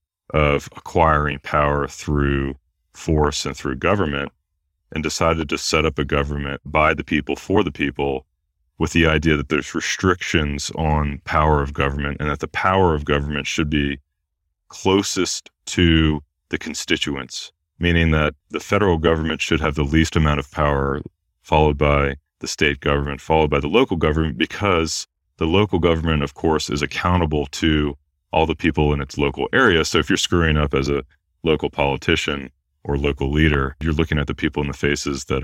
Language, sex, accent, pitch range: English, male, American, 70-80 Hz